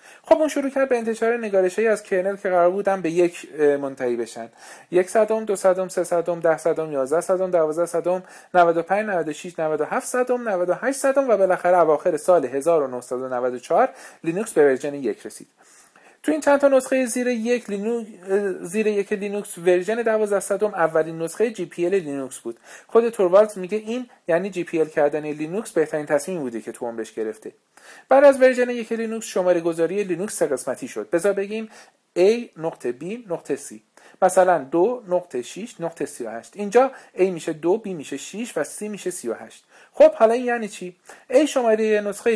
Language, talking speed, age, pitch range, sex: Persian, 175 wpm, 40-59, 150-220 Hz, male